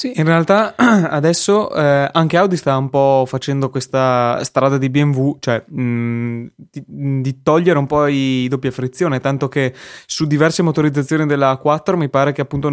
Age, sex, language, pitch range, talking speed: 20-39, male, Italian, 125-145 Hz, 170 wpm